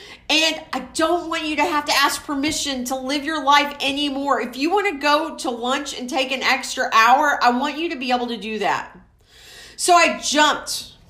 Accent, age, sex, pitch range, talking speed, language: American, 40-59, female, 230-295 Hz, 210 wpm, English